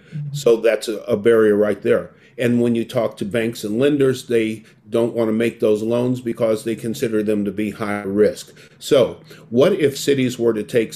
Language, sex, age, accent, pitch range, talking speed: English, male, 50-69, American, 105-120 Hz, 195 wpm